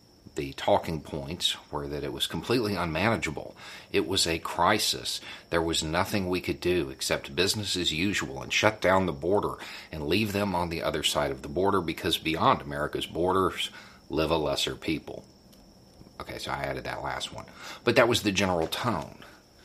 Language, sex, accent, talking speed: English, male, American, 180 wpm